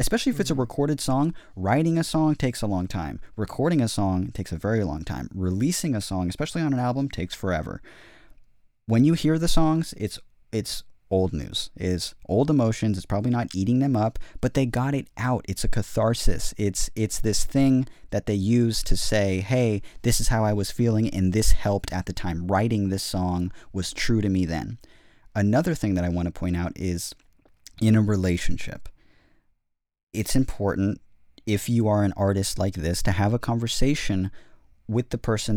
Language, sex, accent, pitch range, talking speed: English, male, American, 95-125 Hz, 190 wpm